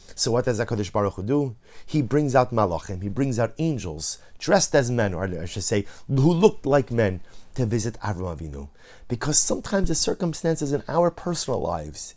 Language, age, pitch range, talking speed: English, 30-49, 100-135 Hz, 185 wpm